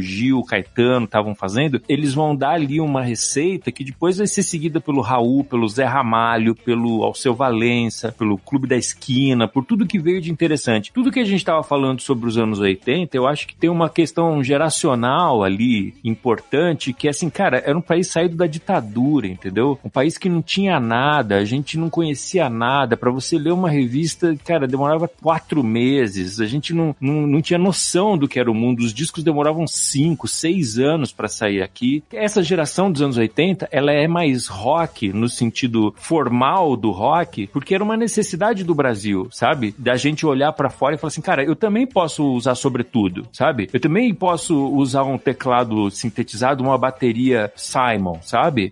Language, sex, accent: Portuguese, male, Brazilian